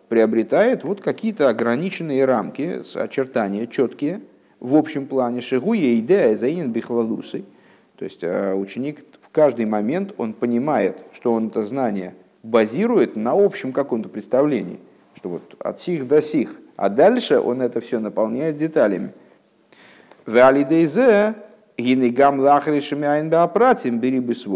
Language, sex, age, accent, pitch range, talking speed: Russian, male, 50-69, native, 115-160 Hz, 100 wpm